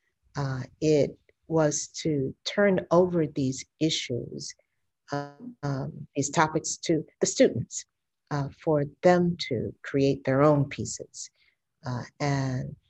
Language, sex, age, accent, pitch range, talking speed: English, female, 50-69, American, 130-155 Hz, 115 wpm